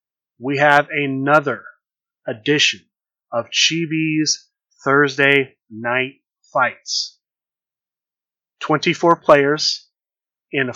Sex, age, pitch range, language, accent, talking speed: male, 30-49, 135-165 Hz, English, American, 65 wpm